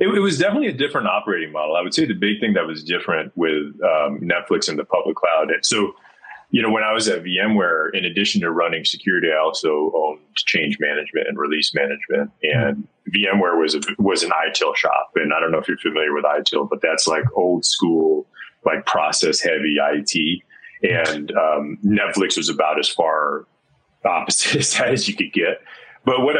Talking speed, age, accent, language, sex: 195 wpm, 30-49, American, English, male